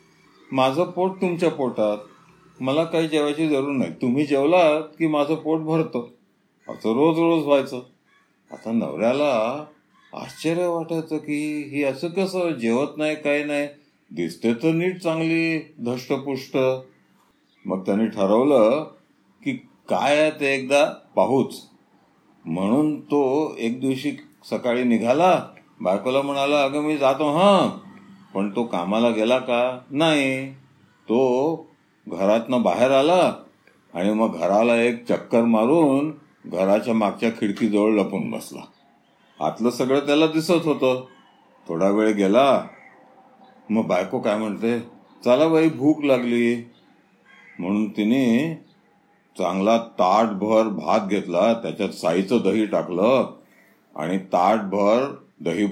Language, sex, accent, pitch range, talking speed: Marathi, male, native, 115-155 Hz, 100 wpm